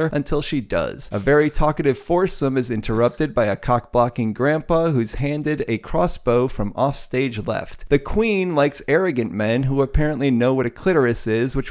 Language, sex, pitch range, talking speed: English, male, 115-155 Hz, 175 wpm